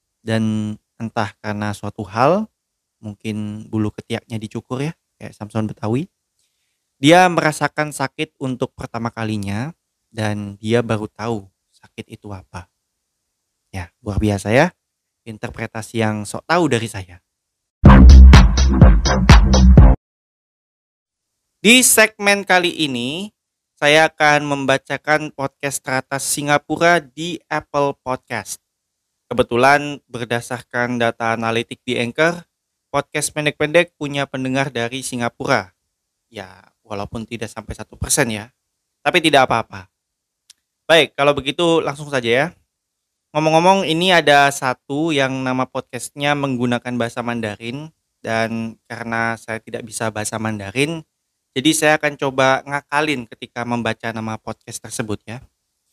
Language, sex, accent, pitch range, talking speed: Indonesian, male, native, 105-145 Hz, 110 wpm